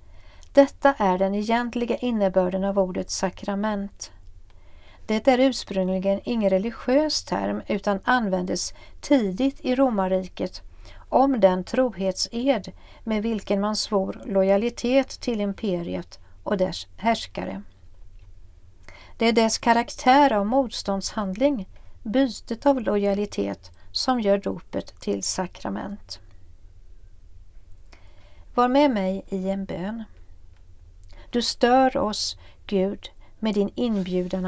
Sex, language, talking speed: female, Swedish, 105 wpm